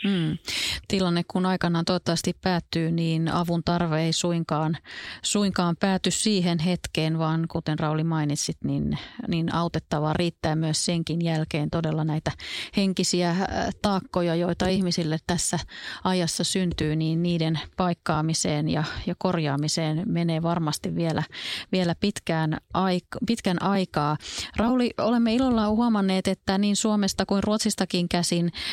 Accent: native